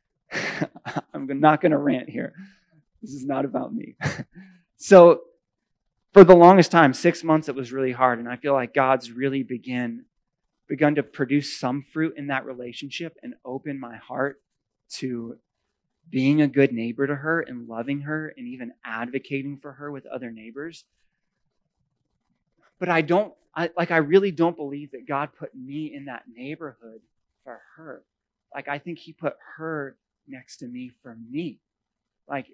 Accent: American